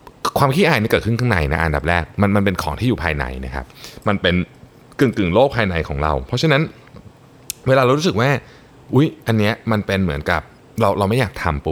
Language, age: Thai, 20-39